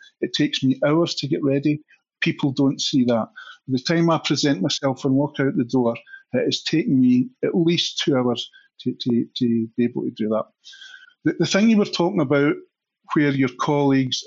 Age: 50-69